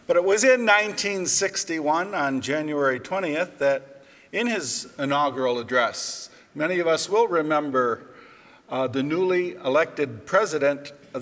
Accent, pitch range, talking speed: American, 145-215 Hz, 130 wpm